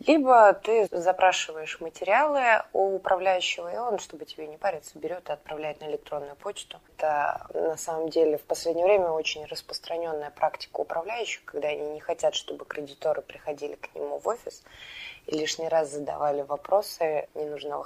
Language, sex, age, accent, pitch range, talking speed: Russian, female, 20-39, native, 150-180 Hz, 155 wpm